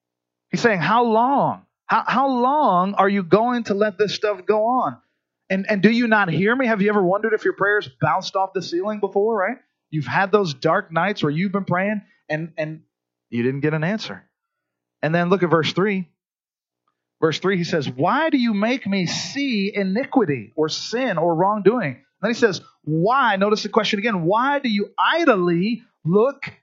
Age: 30-49